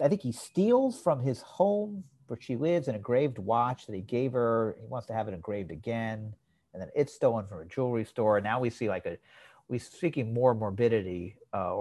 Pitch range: 100-135 Hz